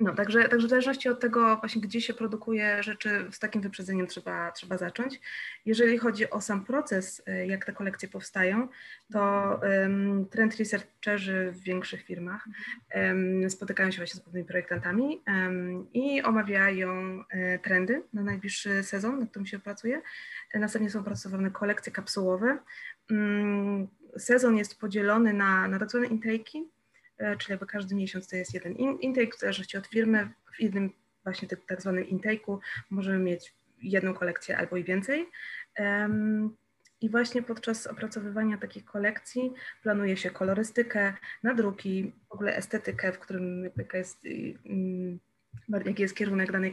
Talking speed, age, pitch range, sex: 135 wpm, 20-39, 190-225 Hz, female